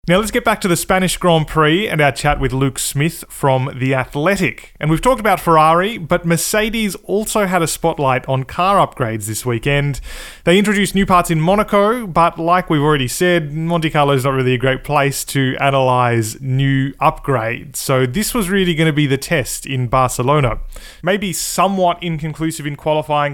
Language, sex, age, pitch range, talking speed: English, male, 20-39, 120-160 Hz, 190 wpm